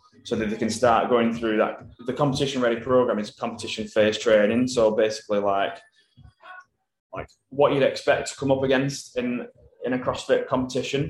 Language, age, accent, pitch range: English, 20-39, British, 105-125 Hz